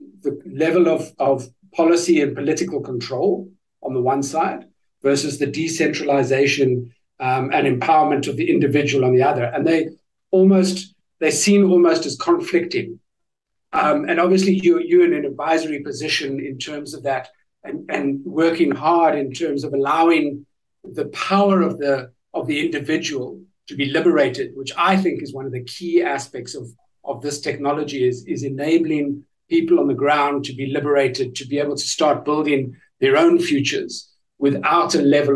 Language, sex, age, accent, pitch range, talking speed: English, male, 60-79, South African, 140-175 Hz, 165 wpm